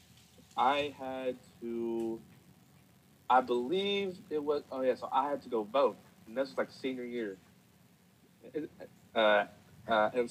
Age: 20-39